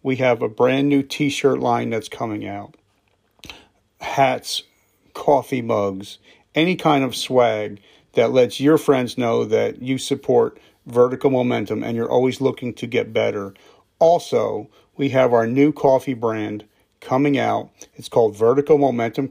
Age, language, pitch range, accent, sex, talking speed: 40-59, English, 115-140 Hz, American, male, 145 wpm